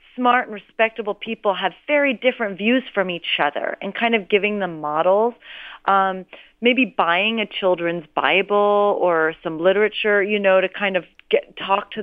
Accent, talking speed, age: American, 165 wpm, 30-49